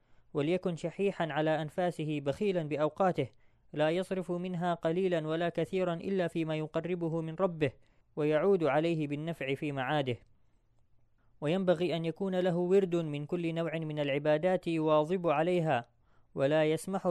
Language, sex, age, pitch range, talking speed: Arabic, female, 20-39, 145-175 Hz, 125 wpm